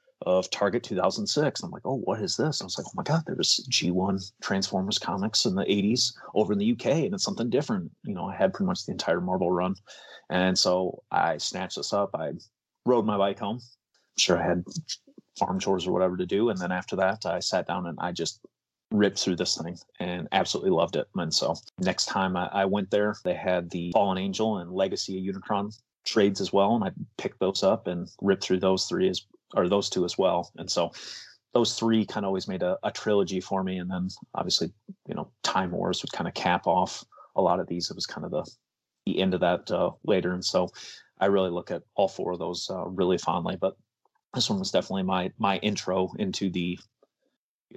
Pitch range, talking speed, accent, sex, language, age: 90-105 Hz, 220 wpm, American, male, English, 30-49